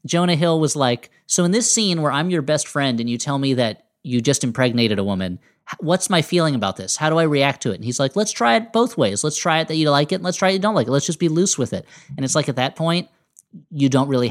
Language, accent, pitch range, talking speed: English, American, 115-160 Hz, 305 wpm